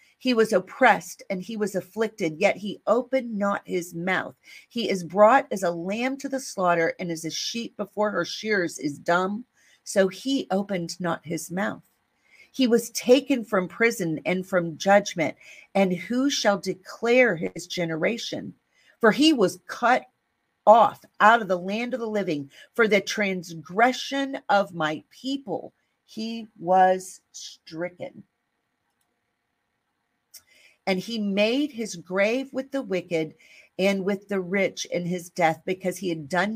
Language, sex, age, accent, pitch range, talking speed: English, female, 50-69, American, 170-220 Hz, 150 wpm